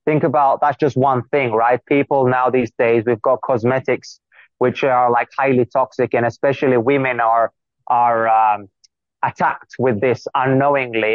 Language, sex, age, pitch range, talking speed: English, male, 20-39, 125-150 Hz, 155 wpm